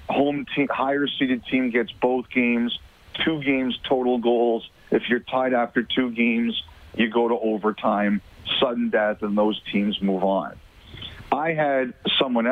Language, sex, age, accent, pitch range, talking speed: English, male, 50-69, American, 110-135 Hz, 150 wpm